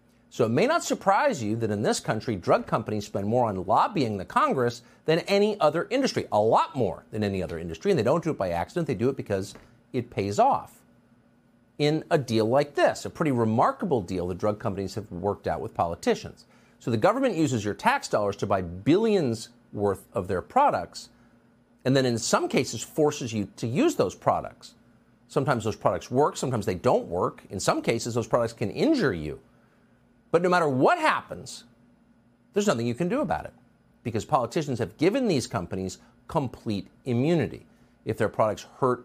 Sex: male